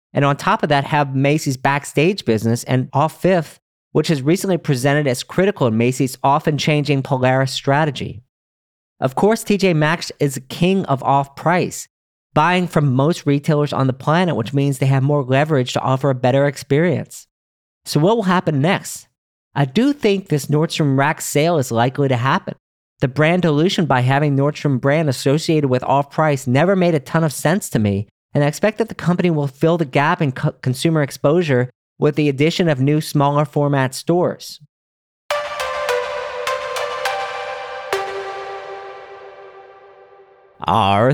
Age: 40-59